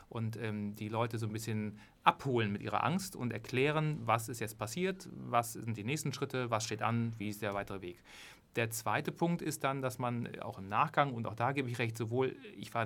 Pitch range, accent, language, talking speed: 115-135 Hz, German, German, 230 wpm